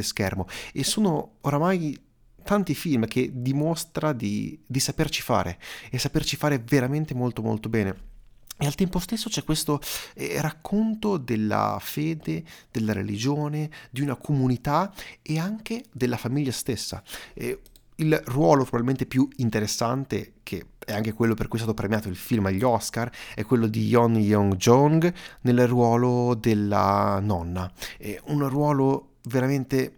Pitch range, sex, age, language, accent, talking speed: 110-145 Hz, male, 30-49, Italian, native, 140 wpm